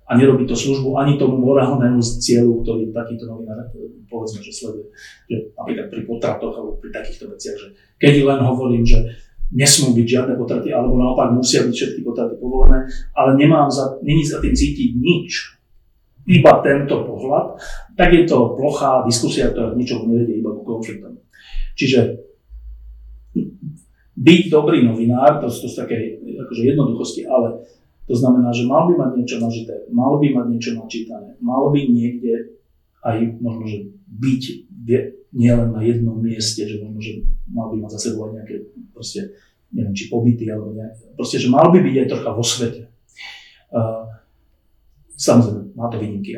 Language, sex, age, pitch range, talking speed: Slovak, male, 40-59, 110-130 Hz, 155 wpm